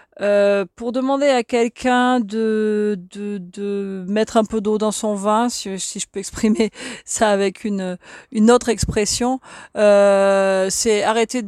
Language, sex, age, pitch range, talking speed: French, female, 40-59, 185-225 Hz, 155 wpm